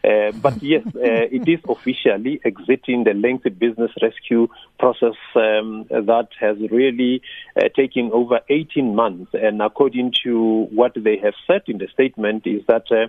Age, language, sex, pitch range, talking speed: 50-69, English, male, 110-130 Hz, 155 wpm